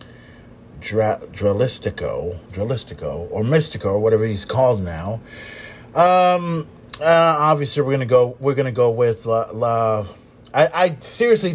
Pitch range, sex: 115-180 Hz, male